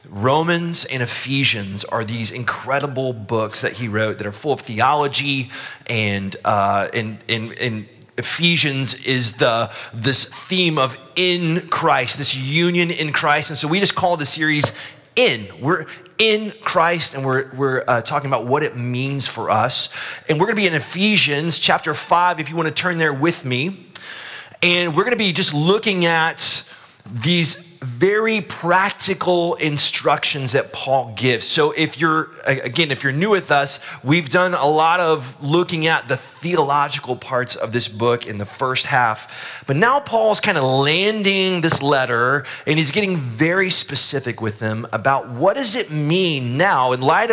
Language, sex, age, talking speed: English, male, 30-49, 165 wpm